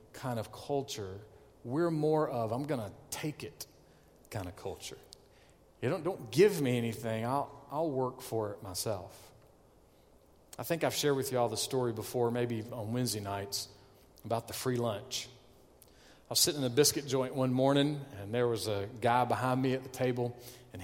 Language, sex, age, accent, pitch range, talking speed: English, male, 40-59, American, 120-195 Hz, 185 wpm